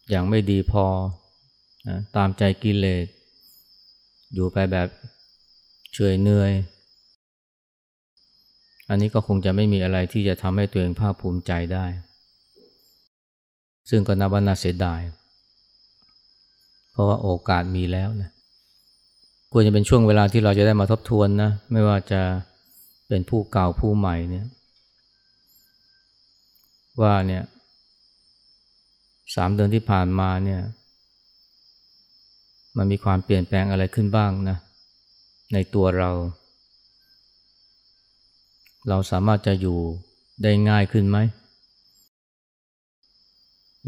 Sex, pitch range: male, 90-105 Hz